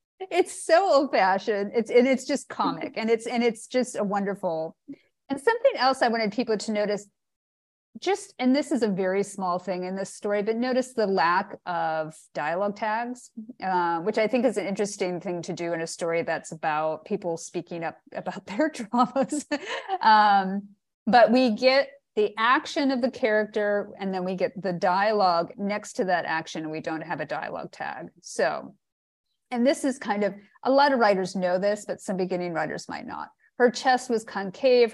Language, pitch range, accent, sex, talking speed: English, 185-245 Hz, American, female, 190 wpm